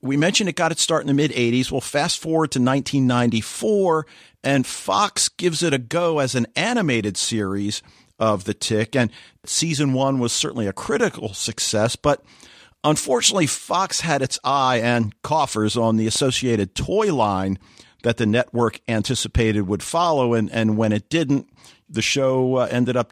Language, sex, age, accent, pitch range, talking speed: English, male, 50-69, American, 110-145 Hz, 165 wpm